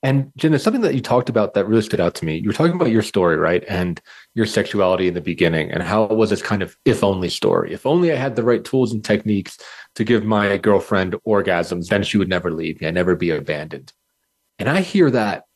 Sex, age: male, 30-49